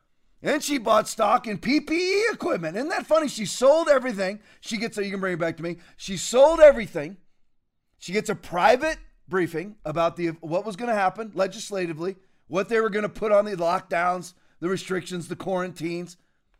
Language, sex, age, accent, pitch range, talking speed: English, male, 40-59, American, 180-265 Hz, 190 wpm